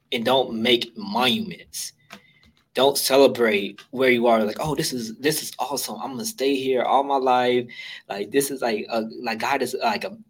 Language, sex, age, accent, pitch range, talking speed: English, male, 20-39, American, 120-145 Hz, 190 wpm